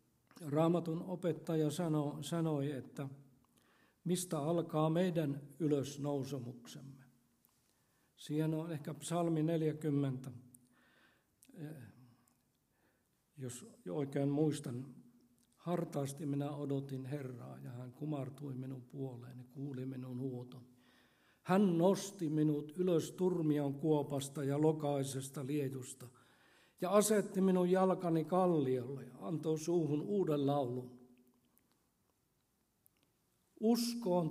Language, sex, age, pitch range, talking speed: Finnish, male, 60-79, 135-175 Hz, 85 wpm